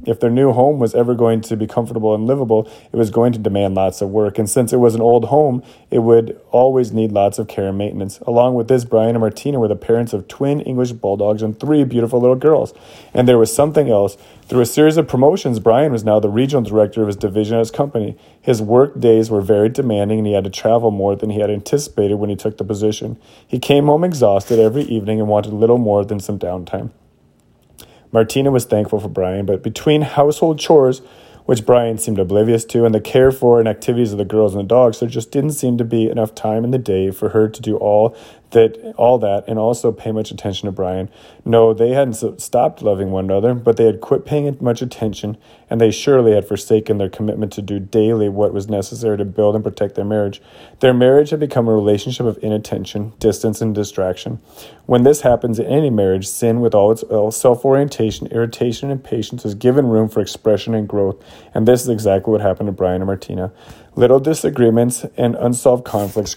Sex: male